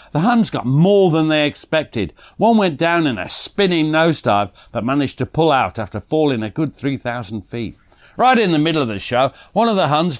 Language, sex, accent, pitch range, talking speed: English, male, British, 120-180 Hz, 210 wpm